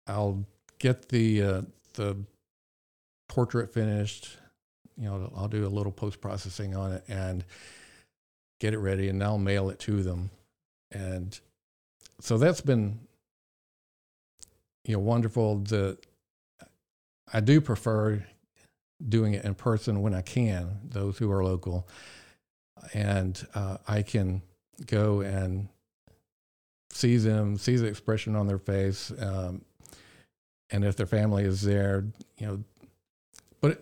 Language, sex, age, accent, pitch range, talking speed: English, male, 50-69, American, 95-110 Hz, 130 wpm